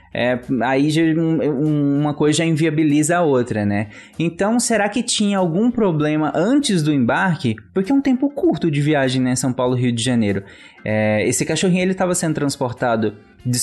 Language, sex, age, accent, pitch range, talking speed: Portuguese, male, 20-39, Brazilian, 130-185 Hz, 155 wpm